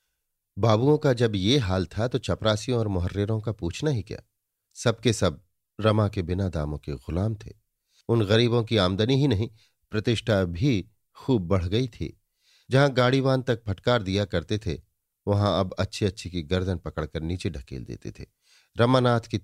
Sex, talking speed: male, 170 wpm